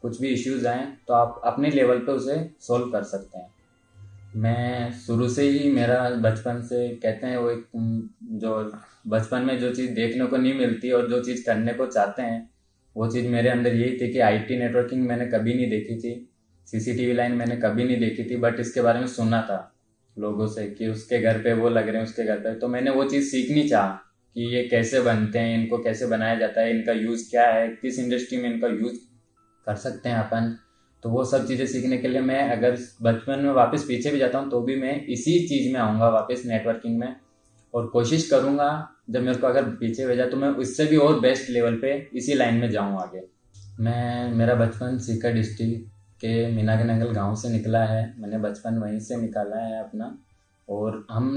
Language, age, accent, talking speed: Hindi, 20-39, native, 210 wpm